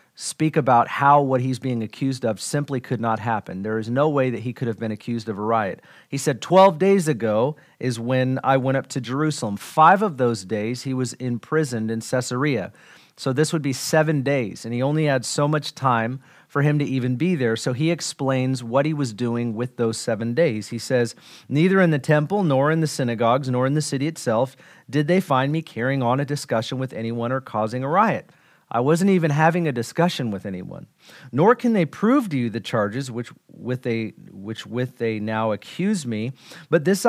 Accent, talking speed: American, 210 wpm